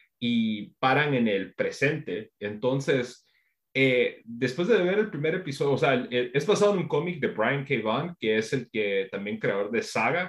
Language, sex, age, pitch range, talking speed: Spanish, male, 30-49, 125-210 Hz, 200 wpm